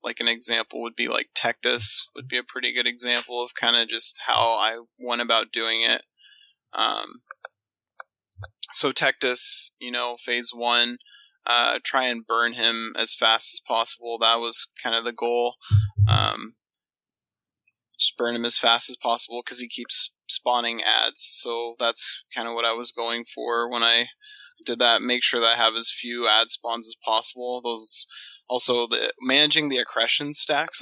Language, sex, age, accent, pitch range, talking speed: English, male, 20-39, American, 115-130 Hz, 175 wpm